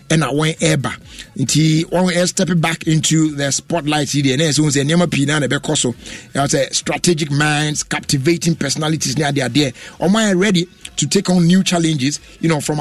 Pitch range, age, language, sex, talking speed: 140-170 Hz, 50-69, English, male, 160 wpm